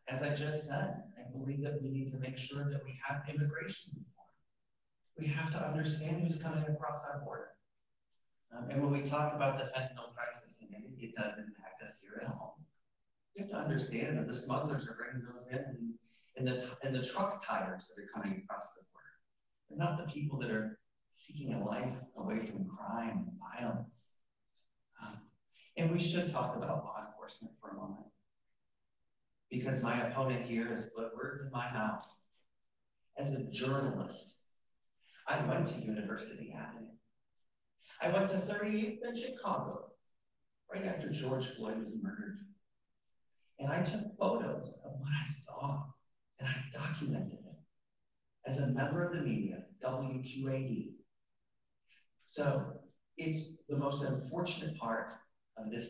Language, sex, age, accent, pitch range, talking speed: English, male, 40-59, American, 125-160 Hz, 160 wpm